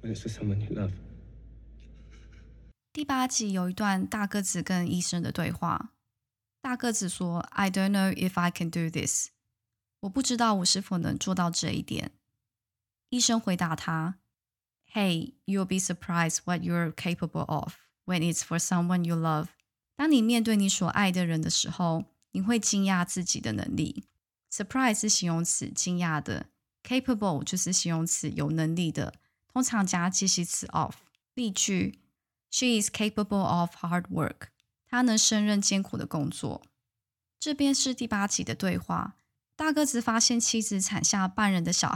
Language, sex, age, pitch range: Chinese, female, 20-39, 170-215 Hz